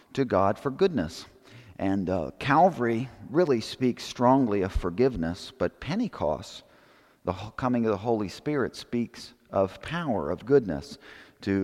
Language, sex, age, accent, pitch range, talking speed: English, male, 50-69, American, 95-125 Hz, 135 wpm